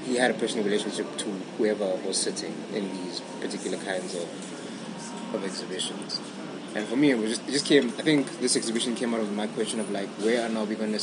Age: 20-39